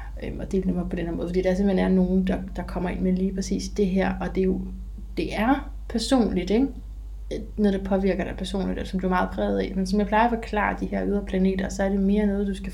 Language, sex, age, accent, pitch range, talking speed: Danish, female, 30-49, native, 185-210 Hz, 265 wpm